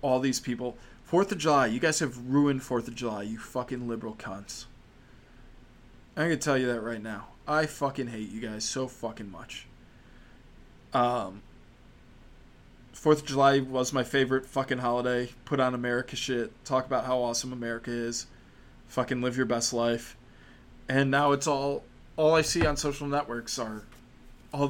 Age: 20-39